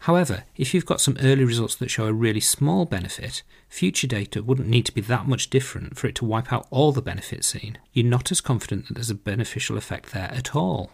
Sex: male